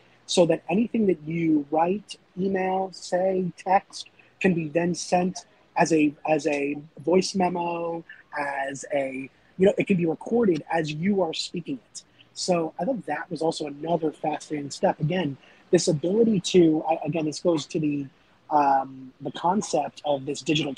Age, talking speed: 30-49, 160 wpm